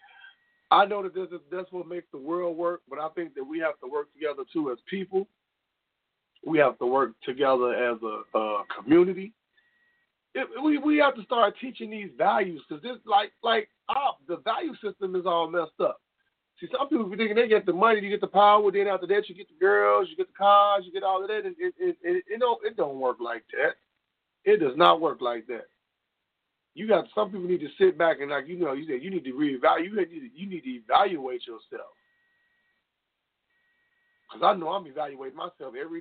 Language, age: English, 40-59